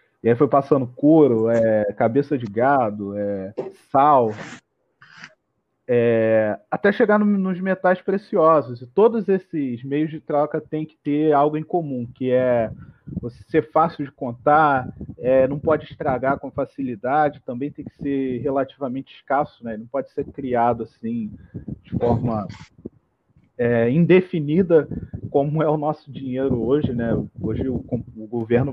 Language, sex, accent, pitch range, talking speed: Portuguese, male, Brazilian, 120-155 Hz, 140 wpm